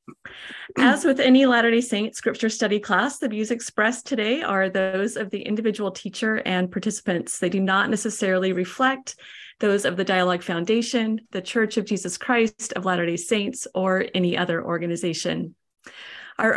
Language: English